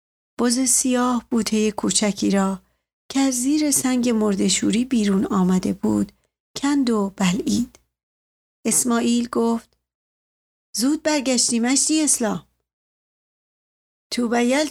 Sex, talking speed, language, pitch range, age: female, 100 wpm, Persian, 200-260 Hz, 40-59